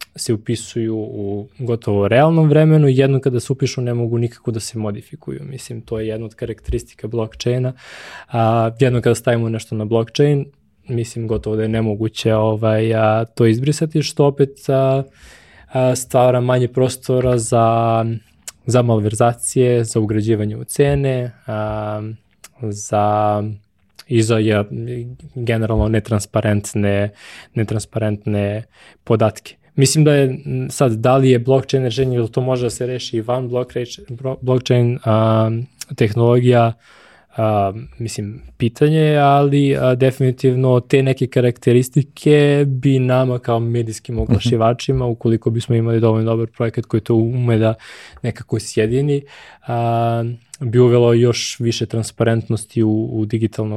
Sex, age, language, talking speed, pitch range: male, 20-39, English, 125 wpm, 110-130 Hz